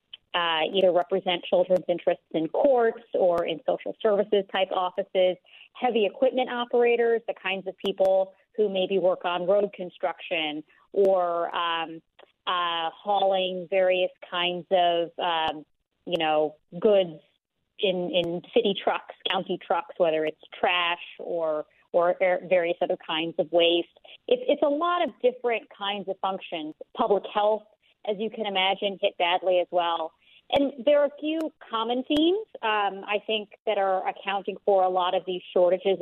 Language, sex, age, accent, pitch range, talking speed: English, female, 30-49, American, 180-230 Hz, 150 wpm